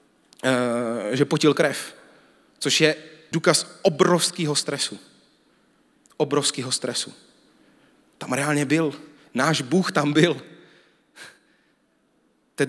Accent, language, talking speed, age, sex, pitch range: native, Czech, 85 wpm, 30-49, male, 120-155 Hz